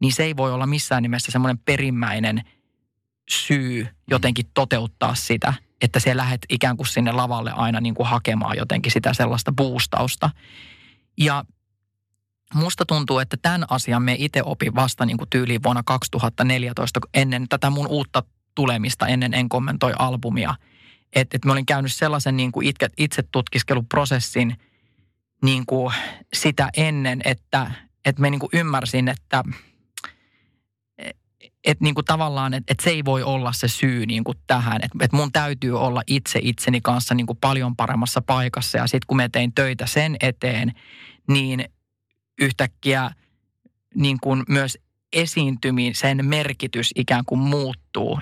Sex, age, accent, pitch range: male, 20-39, native, 120-135 Hz